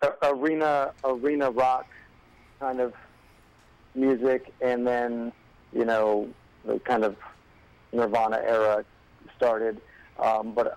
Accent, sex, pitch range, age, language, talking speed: American, male, 110-130 Hz, 40-59, English, 100 wpm